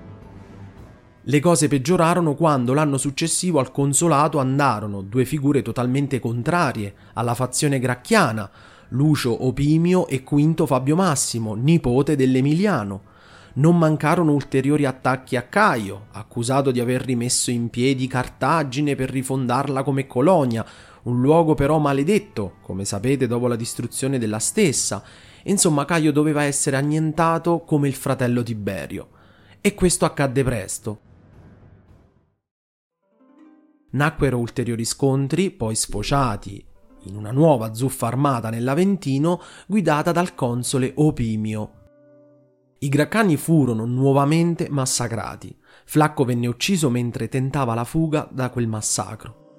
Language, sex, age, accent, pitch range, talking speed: Italian, male, 30-49, native, 115-155 Hz, 115 wpm